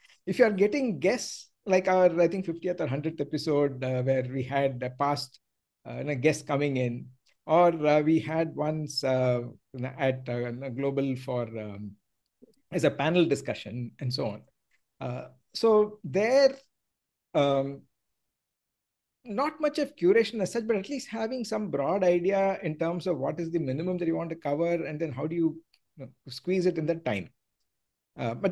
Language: English